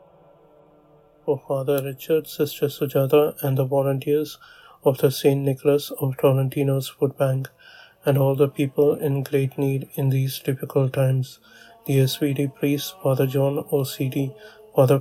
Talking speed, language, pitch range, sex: 130 wpm, English, 135-150 Hz, male